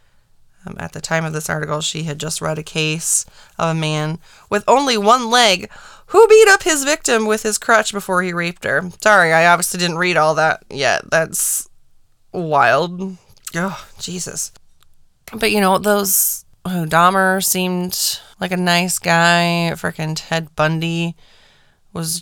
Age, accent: 20-39, American